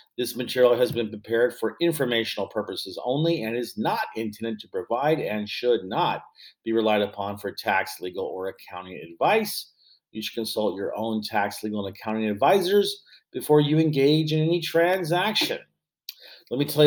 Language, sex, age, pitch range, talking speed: English, male, 40-59, 100-135 Hz, 165 wpm